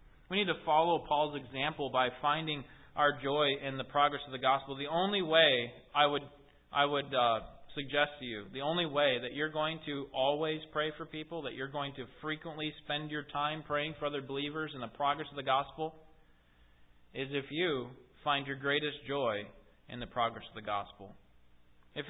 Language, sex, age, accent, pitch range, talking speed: English, male, 20-39, American, 110-150 Hz, 190 wpm